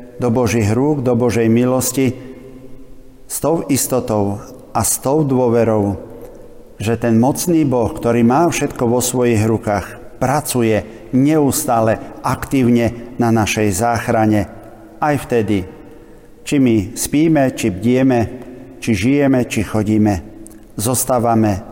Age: 50-69